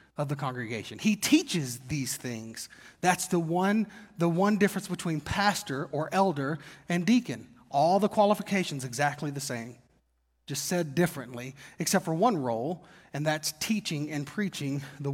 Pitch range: 145-205 Hz